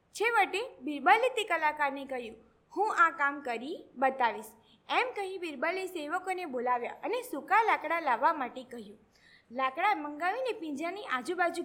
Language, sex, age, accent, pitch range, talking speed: Gujarati, female, 20-39, native, 275-405 Hz, 135 wpm